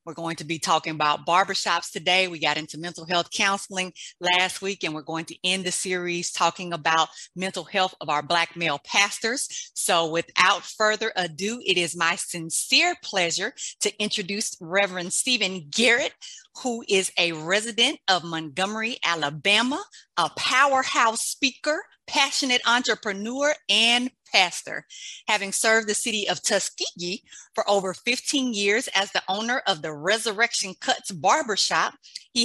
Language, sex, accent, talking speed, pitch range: English, female, American, 145 wpm, 170-230 Hz